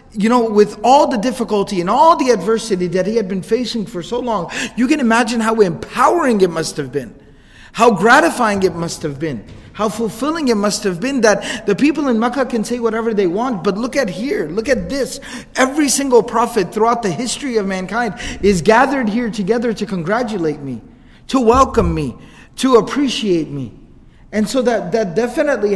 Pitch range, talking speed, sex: 195-235 Hz, 190 wpm, male